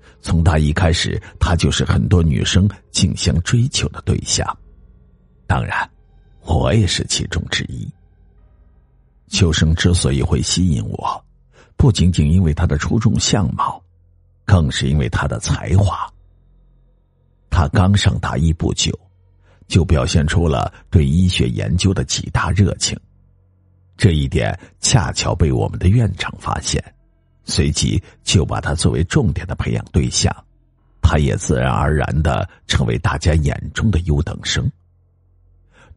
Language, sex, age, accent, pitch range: Chinese, male, 50-69, native, 80-100 Hz